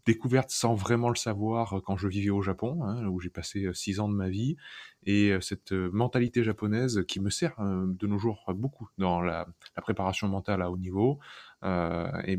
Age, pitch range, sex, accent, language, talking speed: 20-39, 95-110 Hz, male, French, French, 205 wpm